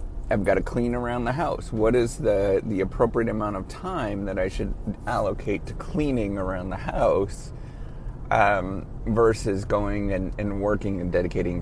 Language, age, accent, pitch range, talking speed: English, 30-49, American, 95-120 Hz, 165 wpm